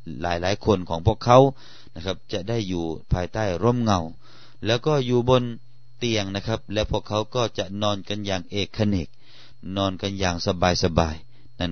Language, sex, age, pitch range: Thai, male, 30-49, 95-120 Hz